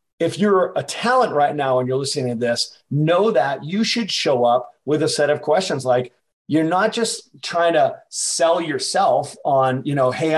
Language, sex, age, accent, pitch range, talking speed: English, male, 40-59, American, 130-160 Hz, 195 wpm